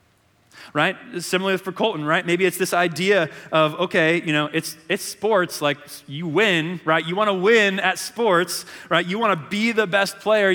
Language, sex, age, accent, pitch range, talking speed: English, male, 30-49, American, 155-200 Hz, 195 wpm